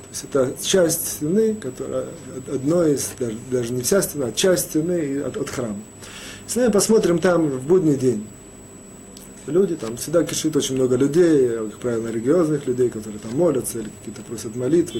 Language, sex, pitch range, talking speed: Russian, male, 120-180 Hz, 170 wpm